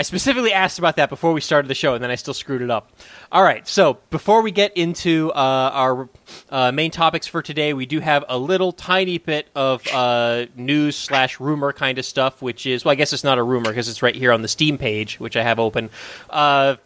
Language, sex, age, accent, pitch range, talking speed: English, male, 20-39, American, 120-145 Hz, 230 wpm